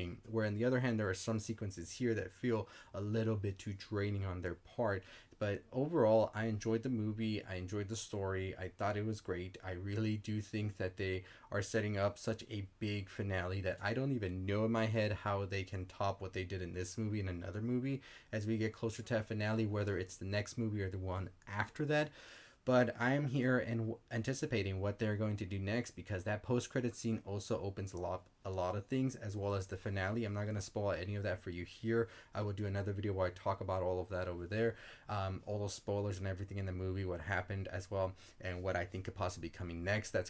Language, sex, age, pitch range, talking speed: English, male, 20-39, 95-115 Hz, 245 wpm